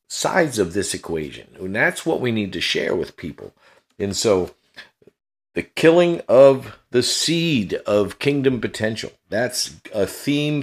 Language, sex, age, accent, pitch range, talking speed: English, male, 50-69, American, 100-140 Hz, 140 wpm